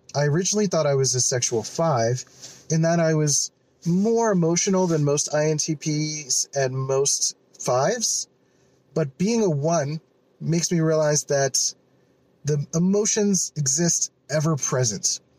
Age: 30-49